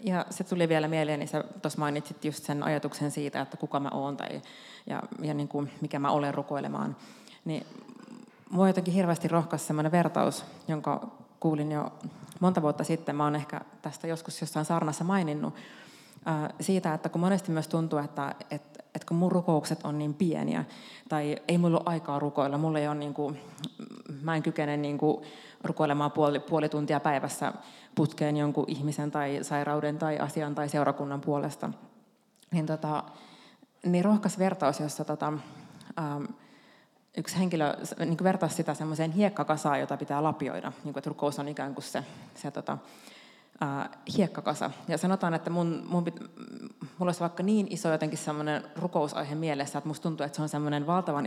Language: Finnish